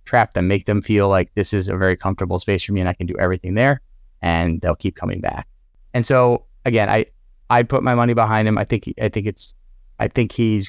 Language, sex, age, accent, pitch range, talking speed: English, male, 30-49, American, 90-100 Hz, 240 wpm